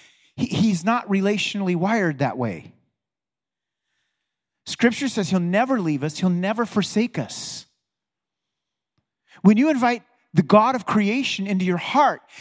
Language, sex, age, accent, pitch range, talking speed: English, male, 40-59, American, 165-225 Hz, 125 wpm